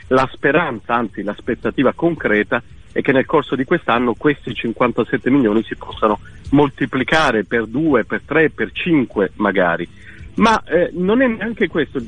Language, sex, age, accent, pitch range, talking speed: Italian, male, 50-69, native, 110-170 Hz, 155 wpm